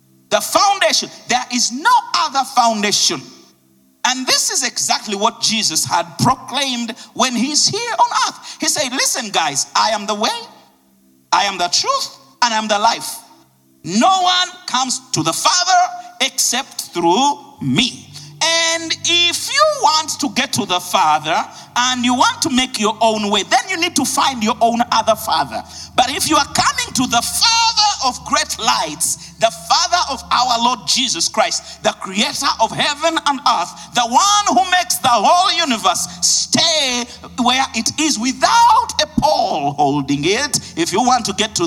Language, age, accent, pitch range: English, 50-69, Nigerian, 200-305 Hz